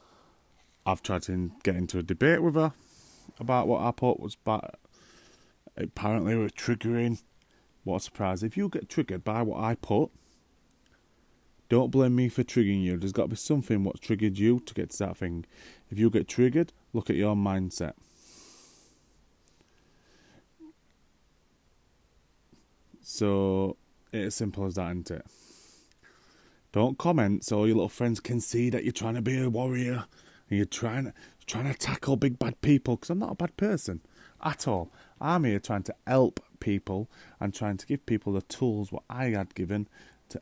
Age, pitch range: 30-49, 95-125 Hz